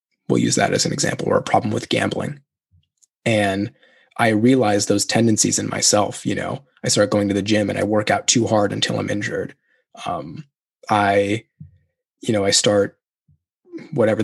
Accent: American